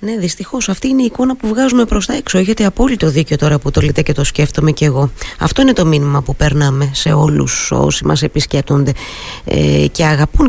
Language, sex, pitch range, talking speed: Greek, female, 150-190 Hz, 210 wpm